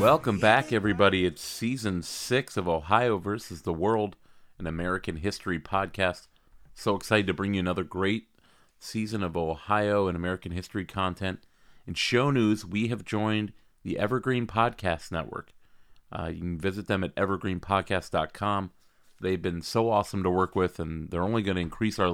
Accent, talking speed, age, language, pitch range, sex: American, 165 wpm, 30-49, English, 85-100 Hz, male